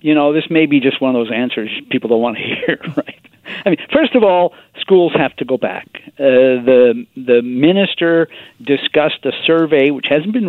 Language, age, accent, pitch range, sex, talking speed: English, 50-69, American, 120-155 Hz, male, 205 wpm